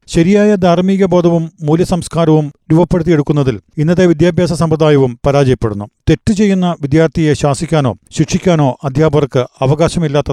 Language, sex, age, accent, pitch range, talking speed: Malayalam, male, 40-59, native, 145-180 Hz, 95 wpm